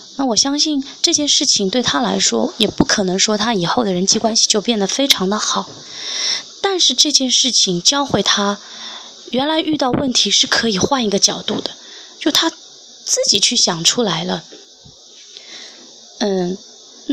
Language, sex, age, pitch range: Chinese, female, 20-39, 195-275 Hz